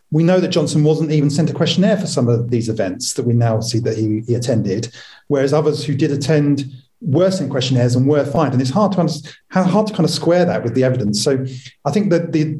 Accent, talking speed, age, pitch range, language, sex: British, 245 wpm, 40-59, 120-155 Hz, English, male